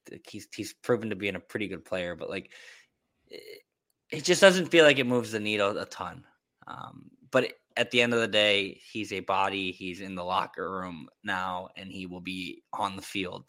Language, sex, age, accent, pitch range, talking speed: English, male, 10-29, American, 95-130 Hz, 215 wpm